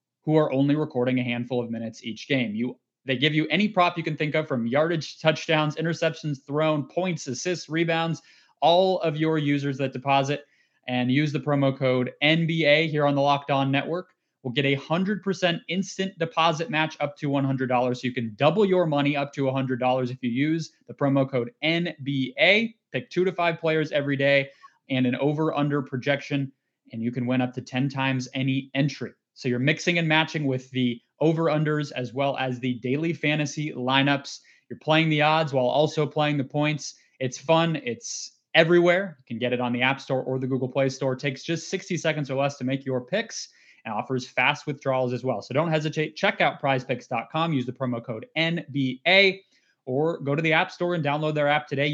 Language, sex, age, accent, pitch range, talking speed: English, male, 20-39, American, 130-160 Hz, 200 wpm